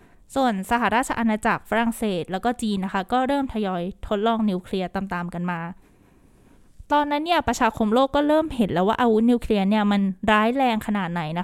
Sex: female